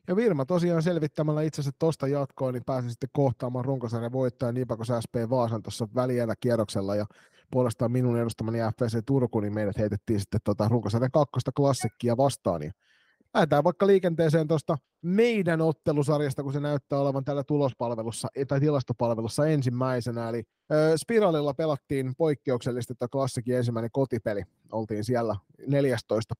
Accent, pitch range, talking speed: native, 115-145 Hz, 140 wpm